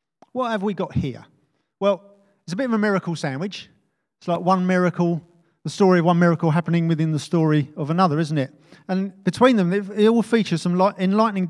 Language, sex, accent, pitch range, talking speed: English, male, British, 155-190 Hz, 200 wpm